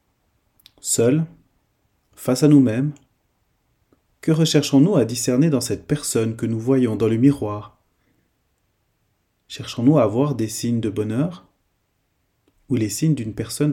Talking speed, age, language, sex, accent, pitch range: 125 wpm, 30-49, French, male, French, 105-145 Hz